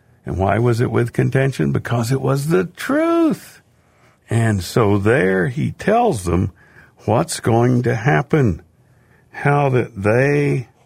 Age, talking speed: 60-79, 135 wpm